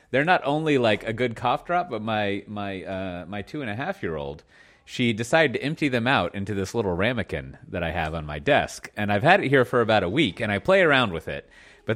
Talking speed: 230 wpm